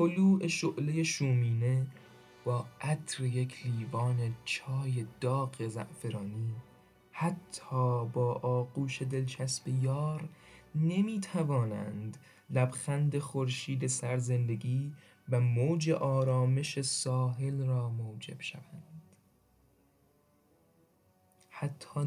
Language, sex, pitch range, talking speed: Persian, male, 120-150 Hz, 75 wpm